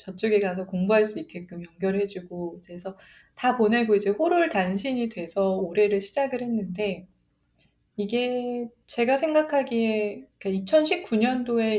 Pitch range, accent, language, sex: 185-250 Hz, native, Korean, female